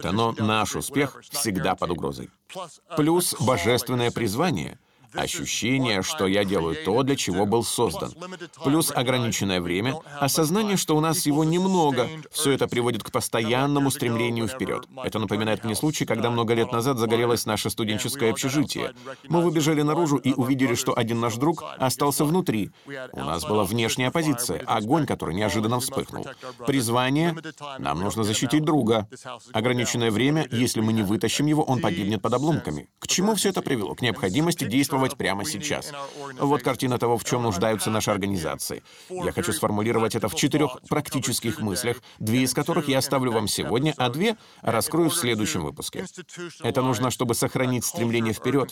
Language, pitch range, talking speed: Russian, 110-145 Hz, 155 wpm